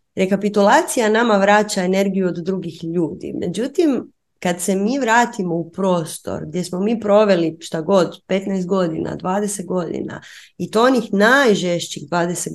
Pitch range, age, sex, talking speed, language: 175-230 Hz, 30-49, female, 140 wpm, Croatian